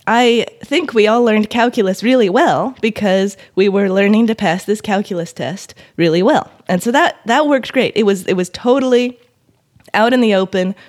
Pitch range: 175-230 Hz